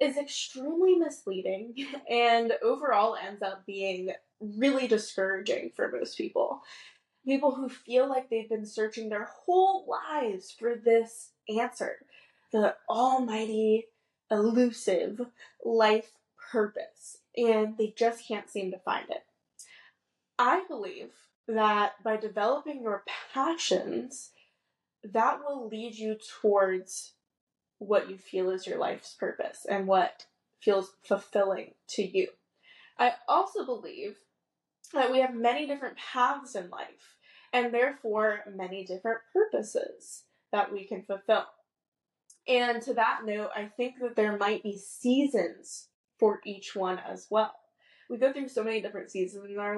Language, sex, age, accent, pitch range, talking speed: English, female, 10-29, American, 205-260 Hz, 130 wpm